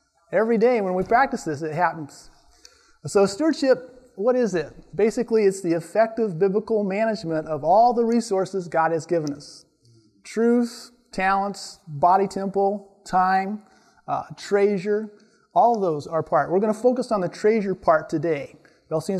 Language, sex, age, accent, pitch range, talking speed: English, male, 30-49, American, 170-225 Hz, 150 wpm